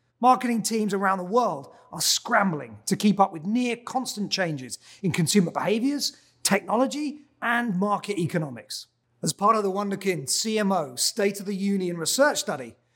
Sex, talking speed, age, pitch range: male, 155 wpm, 30-49, 175-250 Hz